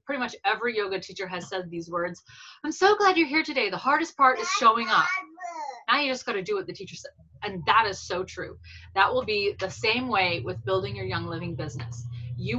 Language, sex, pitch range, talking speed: English, female, 165-245 Hz, 235 wpm